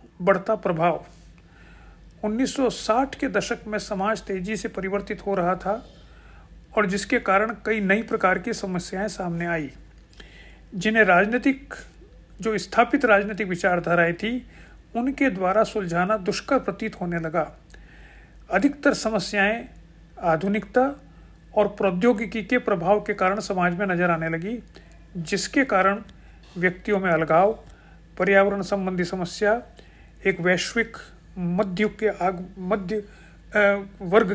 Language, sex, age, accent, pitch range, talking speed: Hindi, male, 50-69, native, 185-220 Hz, 115 wpm